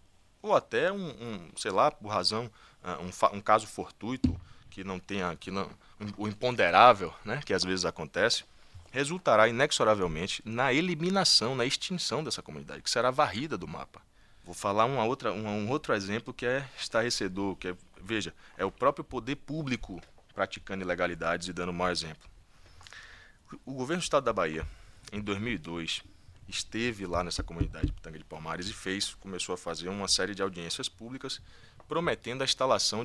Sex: male